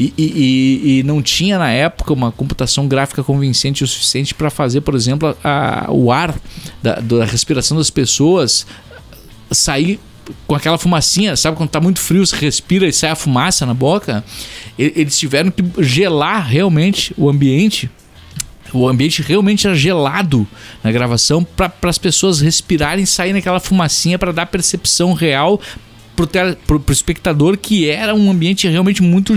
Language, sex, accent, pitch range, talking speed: Portuguese, male, Brazilian, 125-175 Hz, 155 wpm